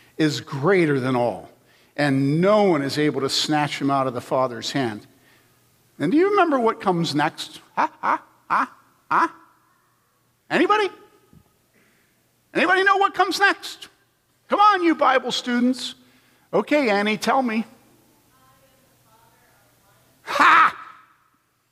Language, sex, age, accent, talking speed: English, male, 50-69, American, 120 wpm